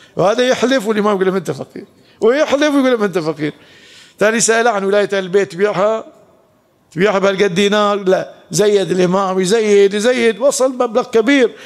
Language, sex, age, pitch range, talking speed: Arabic, male, 50-69, 200-265 Hz, 145 wpm